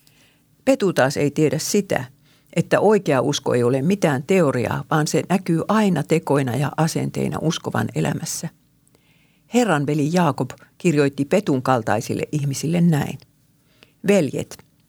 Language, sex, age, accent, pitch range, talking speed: Finnish, female, 50-69, native, 140-170 Hz, 120 wpm